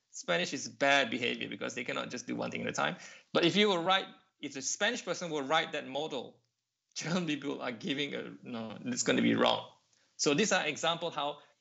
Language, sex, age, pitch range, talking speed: English, male, 20-39, 125-180 Hz, 235 wpm